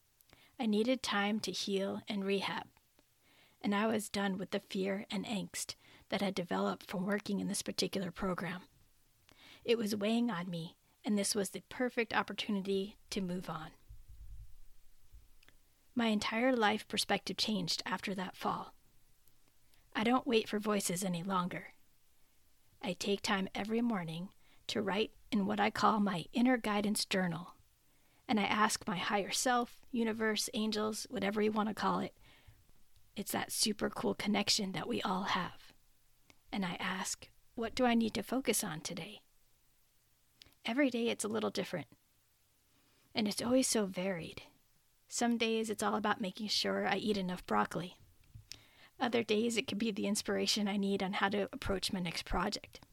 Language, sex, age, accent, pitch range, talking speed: English, female, 40-59, American, 185-220 Hz, 160 wpm